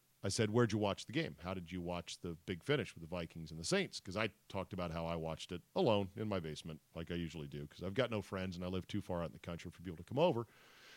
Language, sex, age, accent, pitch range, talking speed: English, male, 40-59, American, 95-135 Hz, 300 wpm